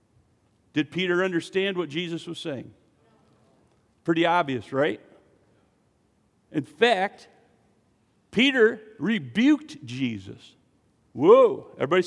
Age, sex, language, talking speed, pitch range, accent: 50-69, male, English, 85 wpm, 140-205 Hz, American